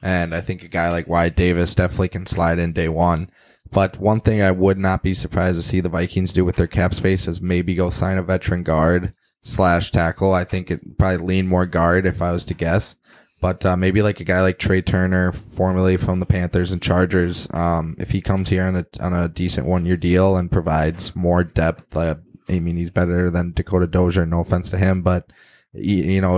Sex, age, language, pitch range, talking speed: male, 20-39, English, 90-95 Hz, 220 wpm